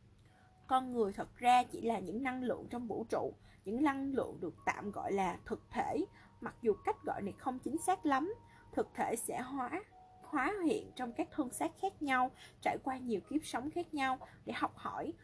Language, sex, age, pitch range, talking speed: Vietnamese, female, 20-39, 230-315 Hz, 205 wpm